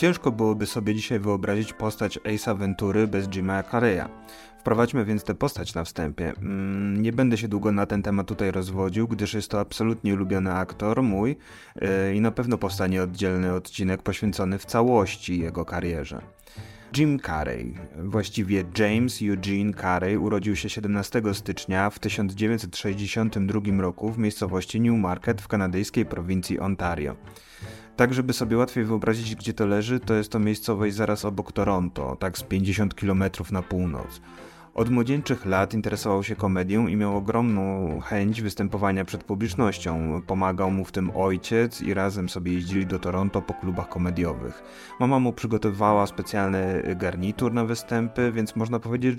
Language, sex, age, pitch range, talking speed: Polish, male, 30-49, 95-110 Hz, 150 wpm